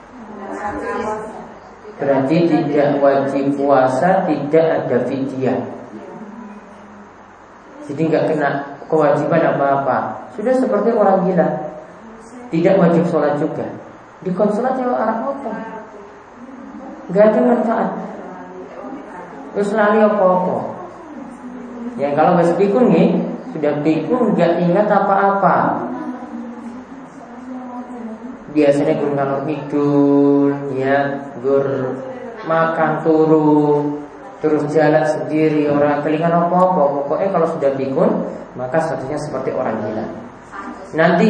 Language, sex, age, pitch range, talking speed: Malay, male, 20-39, 140-210 Hz, 90 wpm